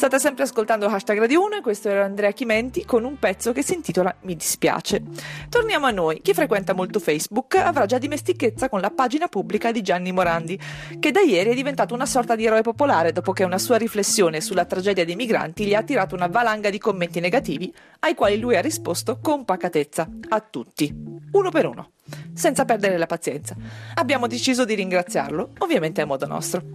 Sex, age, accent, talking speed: female, 40-59, native, 195 wpm